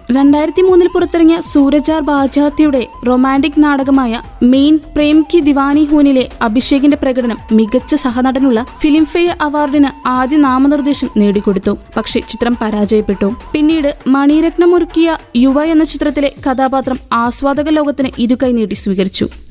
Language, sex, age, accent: Malayalam, female, 20-39, native